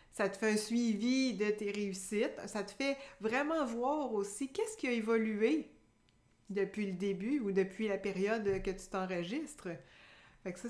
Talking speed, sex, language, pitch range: 165 wpm, female, French, 200-250 Hz